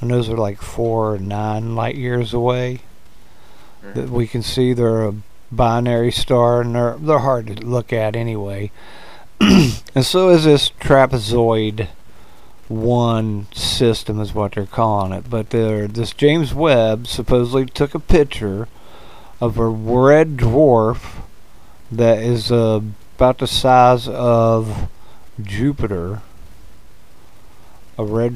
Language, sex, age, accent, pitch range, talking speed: English, male, 50-69, American, 110-125 Hz, 125 wpm